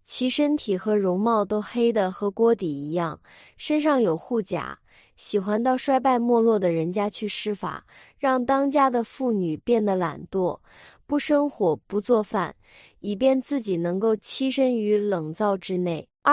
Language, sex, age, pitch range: Chinese, female, 20-39, 190-255 Hz